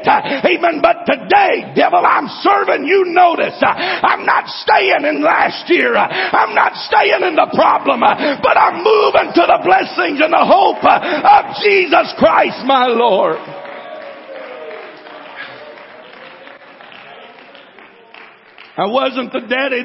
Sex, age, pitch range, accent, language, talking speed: male, 60-79, 255-335 Hz, American, English, 130 wpm